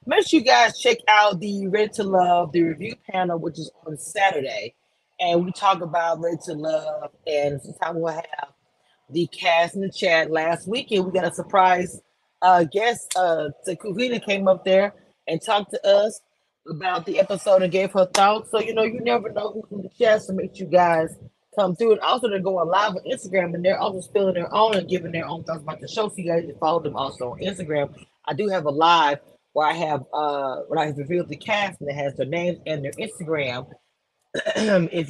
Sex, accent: female, American